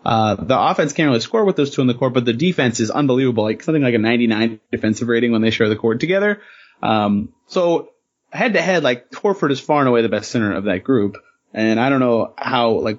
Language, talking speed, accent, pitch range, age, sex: English, 245 wpm, American, 115-155 Hz, 30-49, male